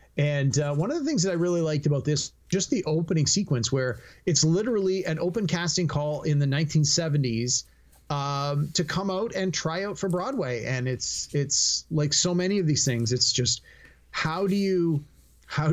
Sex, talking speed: male, 190 wpm